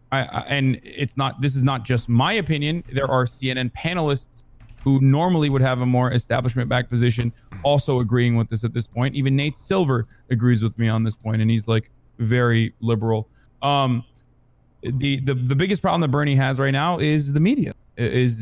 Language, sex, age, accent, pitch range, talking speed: English, male, 30-49, American, 115-130 Hz, 190 wpm